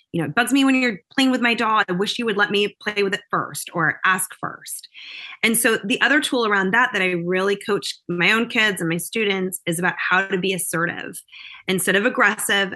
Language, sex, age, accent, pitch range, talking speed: English, female, 20-39, American, 185-245 Hz, 235 wpm